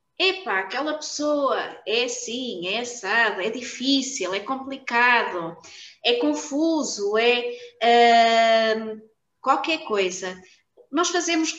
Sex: female